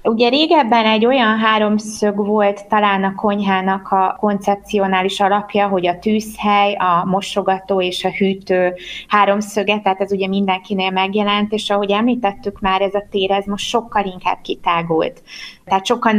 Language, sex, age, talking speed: Hungarian, female, 20-39, 150 wpm